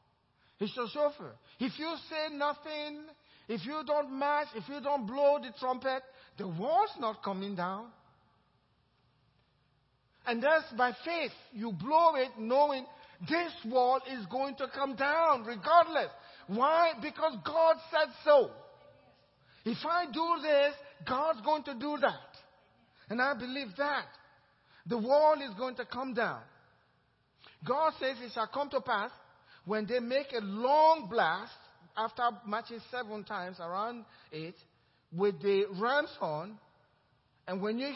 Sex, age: male, 50-69